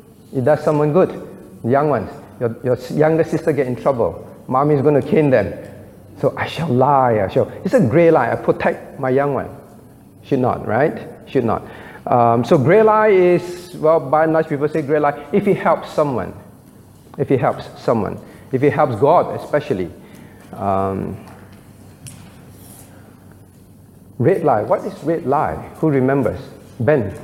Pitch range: 115-160 Hz